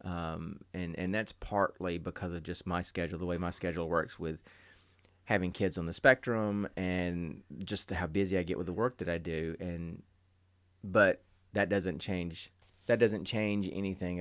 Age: 30-49